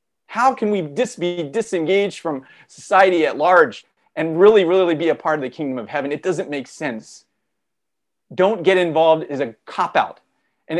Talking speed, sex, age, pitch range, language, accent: 180 wpm, male, 40-59, 155-210 Hz, English, American